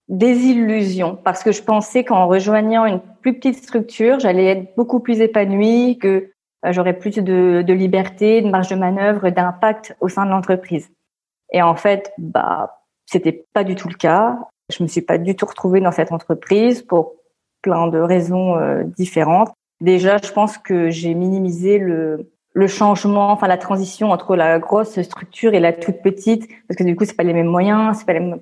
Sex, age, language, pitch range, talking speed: female, 30-49, French, 170-210 Hz, 190 wpm